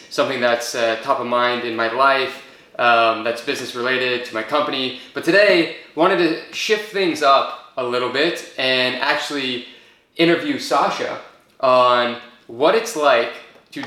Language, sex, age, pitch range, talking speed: English, male, 20-39, 120-145 Hz, 150 wpm